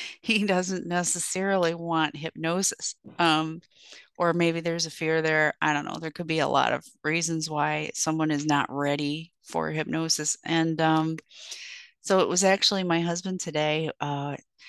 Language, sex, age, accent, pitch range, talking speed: English, female, 30-49, American, 155-180 Hz, 160 wpm